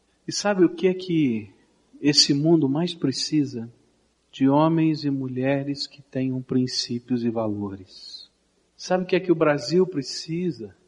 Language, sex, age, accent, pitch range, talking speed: Portuguese, male, 50-69, Brazilian, 130-175 Hz, 150 wpm